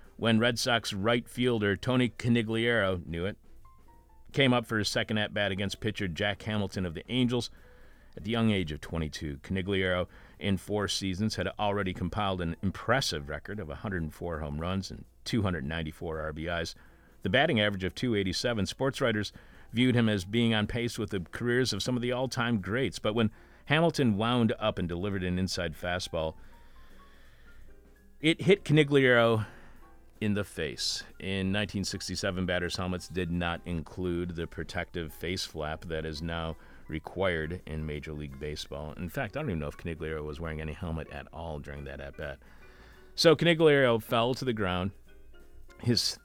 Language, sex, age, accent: English, male, 40-59, American